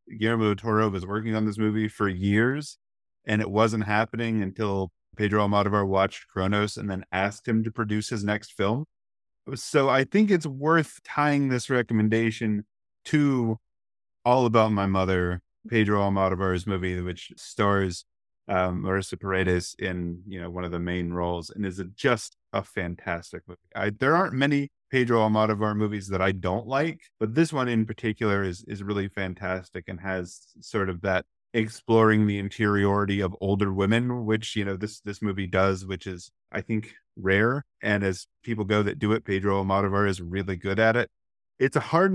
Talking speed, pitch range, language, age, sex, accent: 175 wpm, 95-115 Hz, English, 30-49, male, American